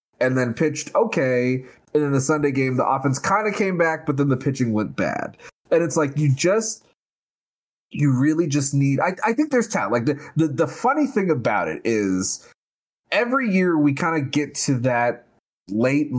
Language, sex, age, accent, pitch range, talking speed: English, male, 20-39, American, 115-150 Hz, 195 wpm